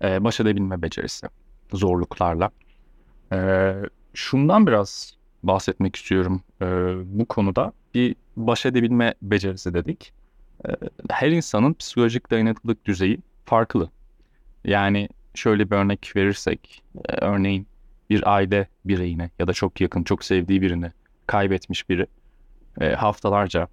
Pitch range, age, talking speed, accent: 95-105 Hz, 30-49, 115 wpm, native